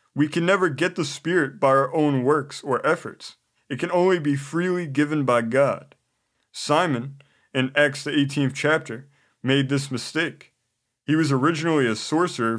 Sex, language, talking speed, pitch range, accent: male, English, 160 wpm, 130-155 Hz, American